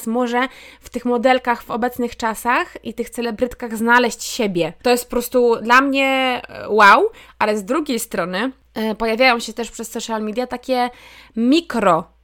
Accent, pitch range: native, 230-270 Hz